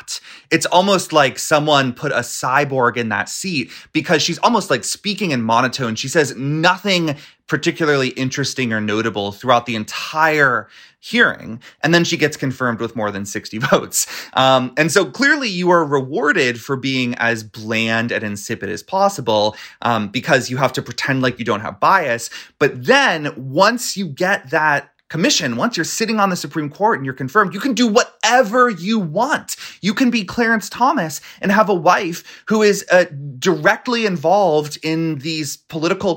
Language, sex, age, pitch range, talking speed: English, male, 30-49, 125-185 Hz, 175 wpm